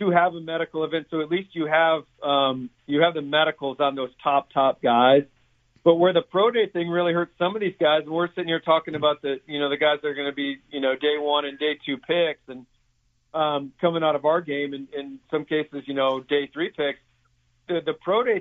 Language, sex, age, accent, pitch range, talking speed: English, male, 40-59, American, 135-160 Hz, 240 wpm